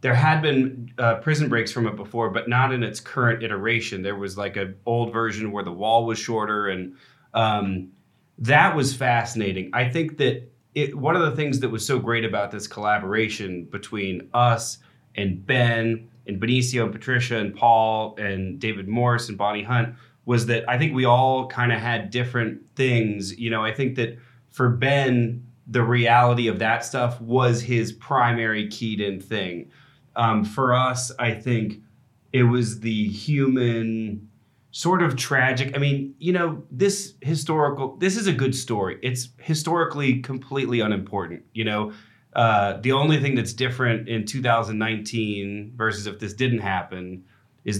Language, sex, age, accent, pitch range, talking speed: English, male, 30-49, American, 110-130 Hz, 165 wpm